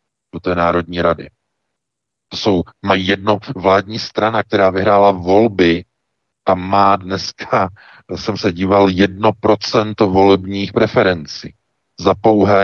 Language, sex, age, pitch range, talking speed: Czech, male, 50-69, 85-105 Hz, 120 wpm